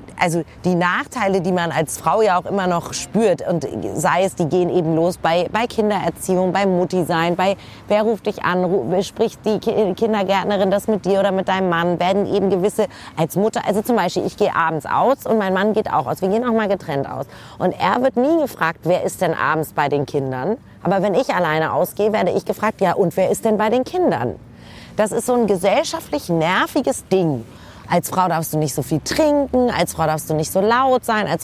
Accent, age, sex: German, 30-49, female